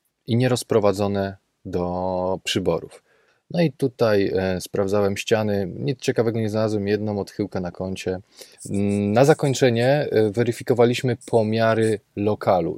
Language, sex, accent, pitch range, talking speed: Polish, male, native, 100-125 Hz, 105 wpm